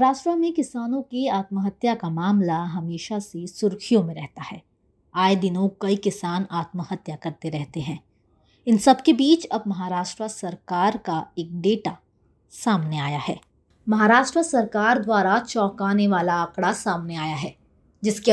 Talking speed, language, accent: 140 wpm, Hindi, native